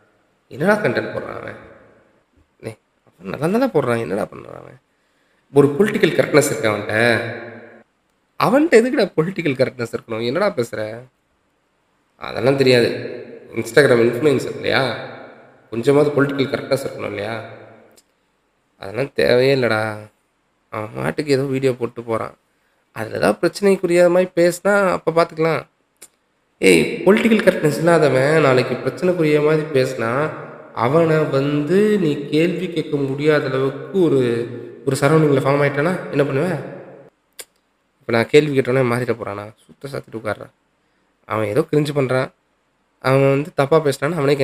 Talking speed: 110 wpm